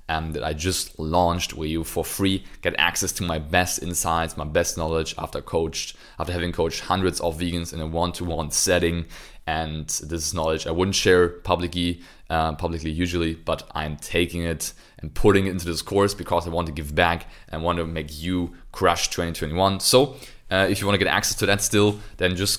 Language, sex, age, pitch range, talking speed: English, male, 20-39, 80-95 Hz, 200 wpm